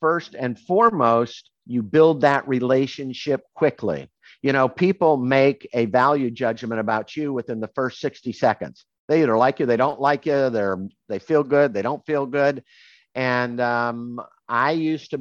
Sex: male